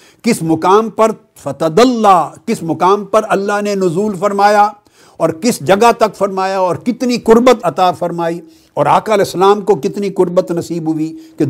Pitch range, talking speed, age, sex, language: 115-180 Hz, 155 wpm, 60-79, male, Urdu